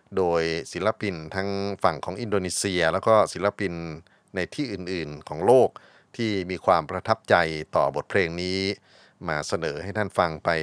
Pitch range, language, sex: 85-110 Hz, Thai, male